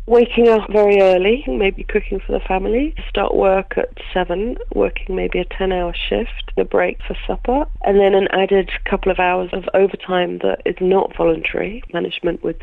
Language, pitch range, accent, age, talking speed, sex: English, 170-195 Hz, British, 40-59, 175 wpm, female